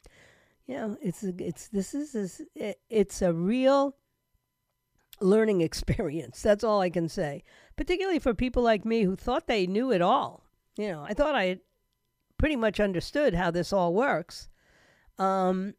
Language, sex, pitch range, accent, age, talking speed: English, female, 190-255 Hz, American, 50-69, 155 wpm